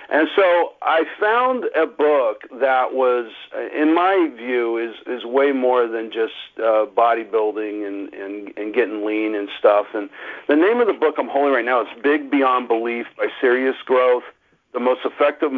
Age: 50-69